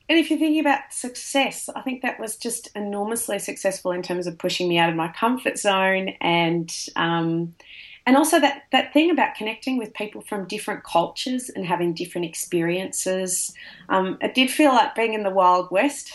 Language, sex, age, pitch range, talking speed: English, female, 30-49, 165-245 Hz, 190 wpm